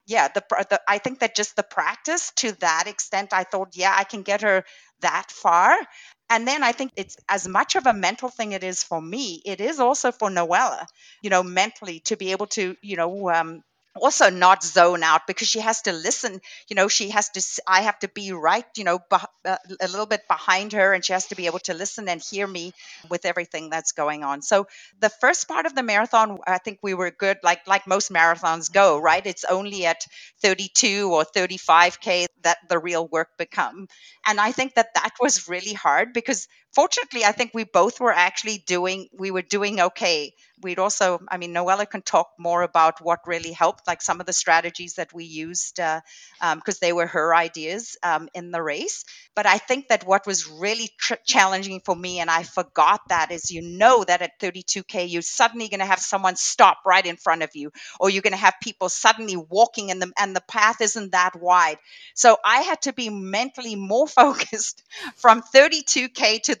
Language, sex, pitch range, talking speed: English, female, 175-215 Hz, 210 wpm